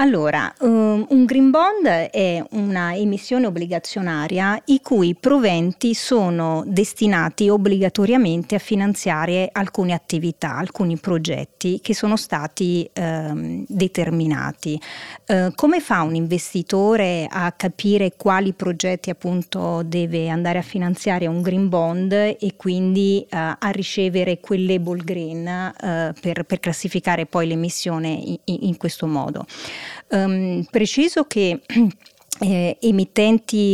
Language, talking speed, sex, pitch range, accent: Italian, 105 wpm, female, 170-200 Hz, native